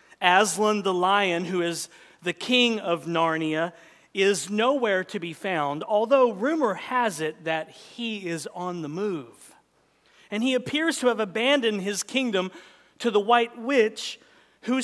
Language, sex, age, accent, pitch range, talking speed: English, male, 40-59, American, 170-235 Hz, 150 wpm